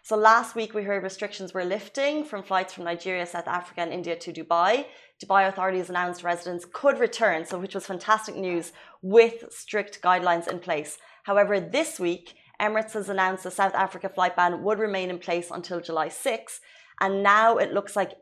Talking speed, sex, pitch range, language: 190 wpm, female, 180-210 Hz, Arabic